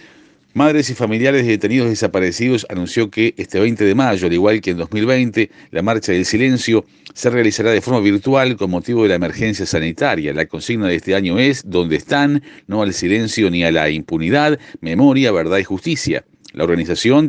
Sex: male